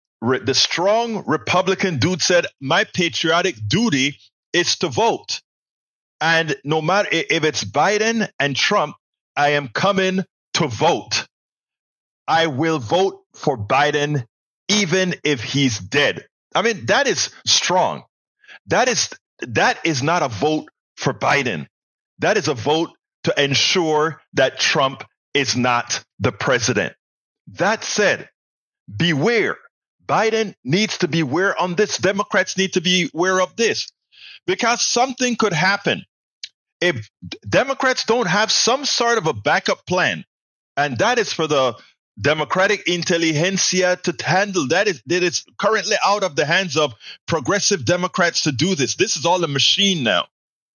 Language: English